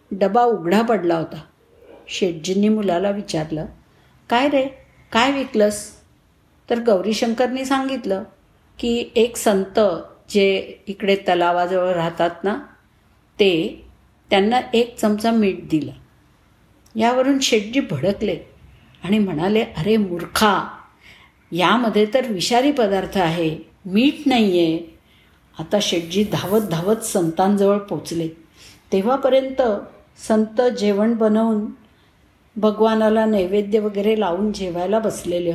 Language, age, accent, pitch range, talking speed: Marathi, 50-69, native, 190-245 Hz, 100 wpm